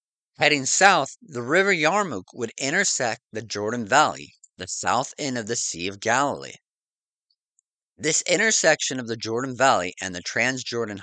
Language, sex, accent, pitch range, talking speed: English, male, American, 115-175 Hz, 145 wpm